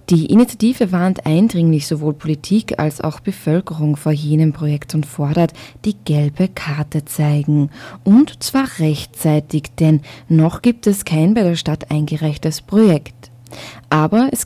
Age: 20-39